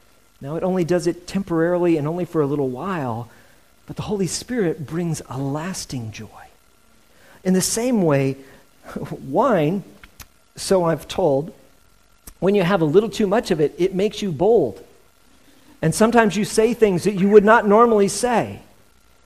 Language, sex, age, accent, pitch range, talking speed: English, male, 50-69, American, 145-210 Hz, 160 wpm